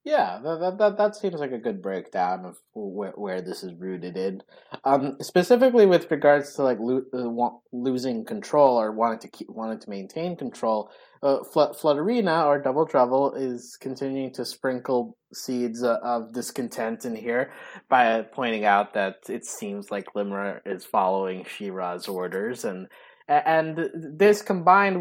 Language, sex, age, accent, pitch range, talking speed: English, male, 20-39, American, 110-165 Hz, 155 wpm